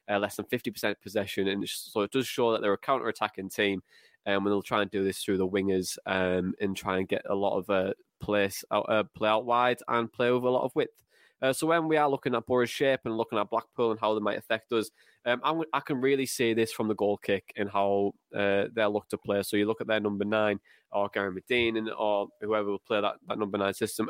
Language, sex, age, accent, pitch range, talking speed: English, male, 20-39, British, 100-120 Hz, 260 wpm